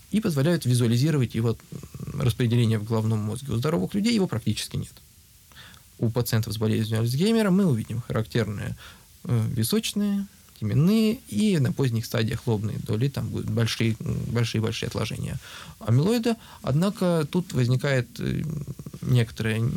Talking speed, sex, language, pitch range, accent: 120 wpm, male, Russian, 115-155 Hz, native